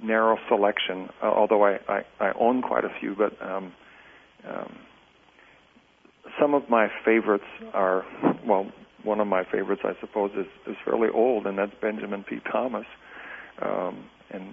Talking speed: 155 wpm